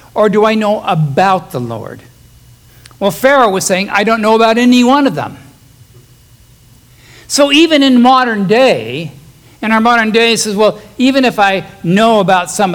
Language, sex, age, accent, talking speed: English, male, 60-79, American, 175 wpm